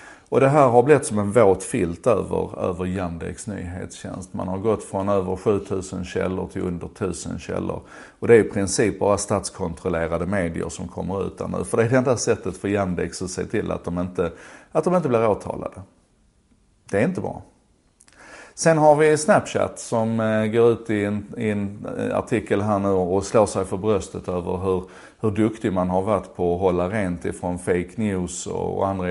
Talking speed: 190 wpm